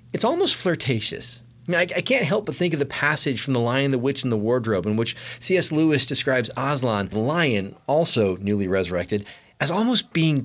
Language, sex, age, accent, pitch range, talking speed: English, male, 30-49, American, 130-190 Hz, 200 wpm